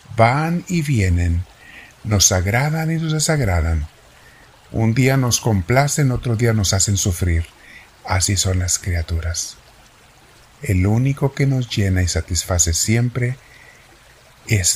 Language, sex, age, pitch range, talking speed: Spanish, male, 50-69, 90-120 Hz, 120 wpm